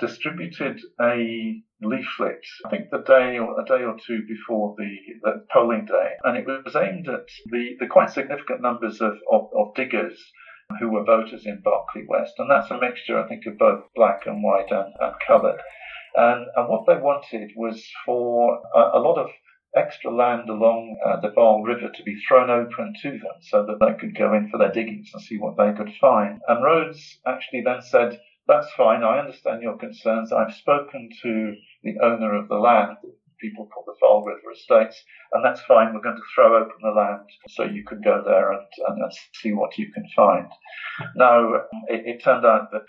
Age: 50-69